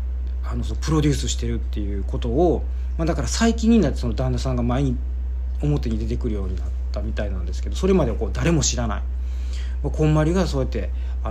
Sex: male